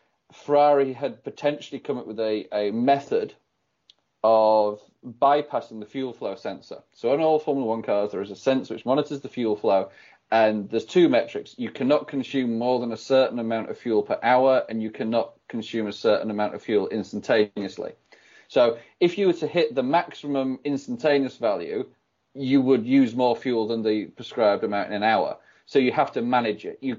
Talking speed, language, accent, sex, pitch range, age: 190 wpm, English, British, male, 115-145 Hz, 30-49